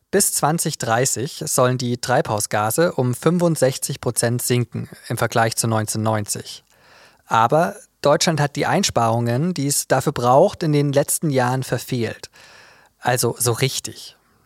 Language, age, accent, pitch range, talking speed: German, 20-39, German, 120-155 Hz, 125 wpm